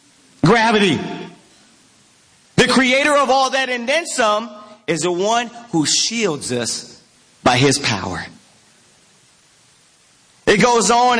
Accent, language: American, English